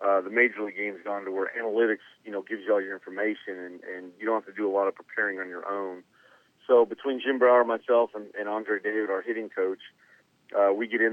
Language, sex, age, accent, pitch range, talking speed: English, male, 40-59, American, 100-115 Hz, 255 wpm